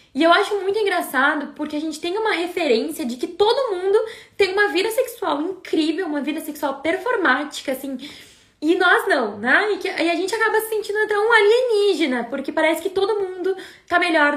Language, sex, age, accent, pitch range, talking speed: Portuguese, female, 10-29, Brazilian, 265-345 Hz, 190 wpm